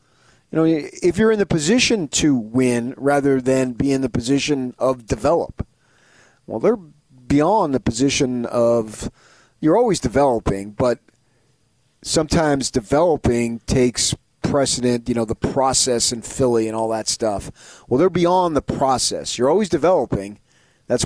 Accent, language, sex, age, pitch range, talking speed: American, English, male, 30-49, 115-140 Hz, 140 wpm